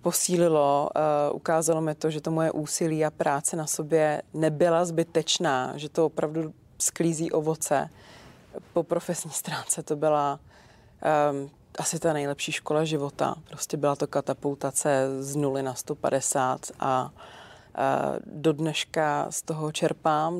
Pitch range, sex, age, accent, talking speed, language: 150-165 Hz, female, 30-49, native, 130 wpm, Czech